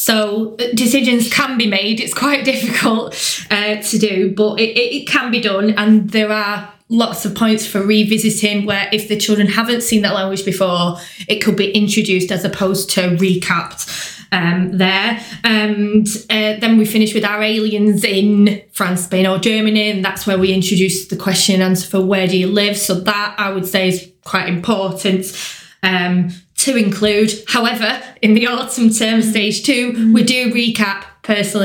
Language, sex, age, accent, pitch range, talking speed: English, female, 20-39, British, 190-220 Hz, 175 wpm